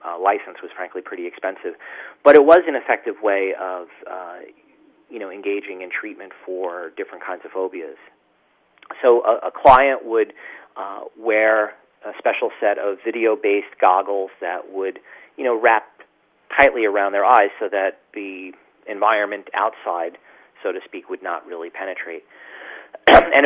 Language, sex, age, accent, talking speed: English, male, 40-59, American, 150 wpm